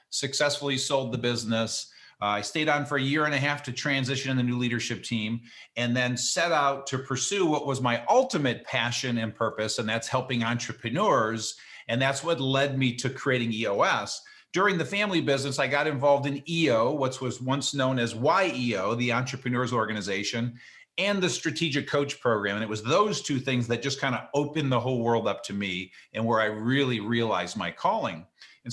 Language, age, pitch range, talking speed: English, 50-69, 115-145 Hz, 195 wpm